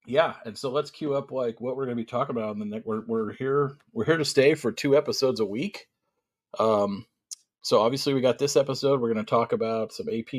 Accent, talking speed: American, 250 wpm